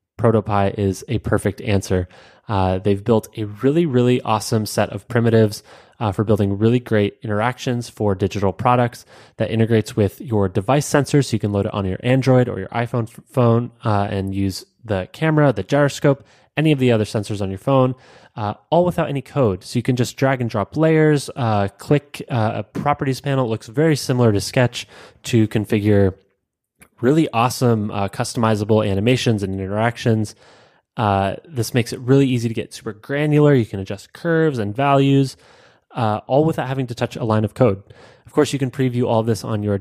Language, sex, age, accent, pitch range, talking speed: English, male, 20-39, American, 105-130 Hz, 190 wpm